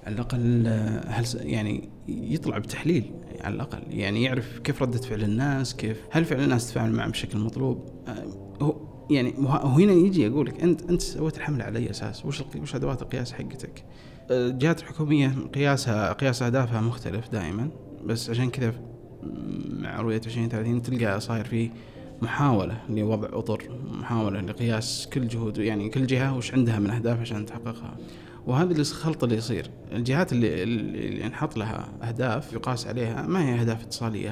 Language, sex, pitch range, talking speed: Arabic, male, 110-130 Hz, 150 wpm